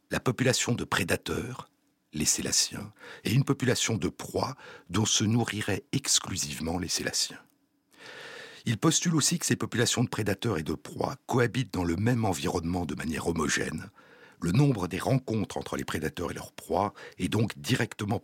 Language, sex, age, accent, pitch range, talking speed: French, male, 60-79, French, 95-130 Hz, 160 wpm